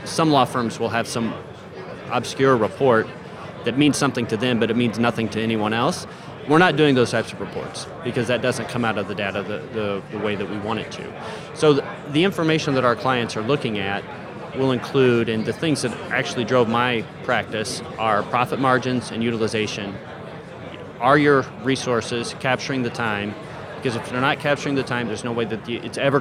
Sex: male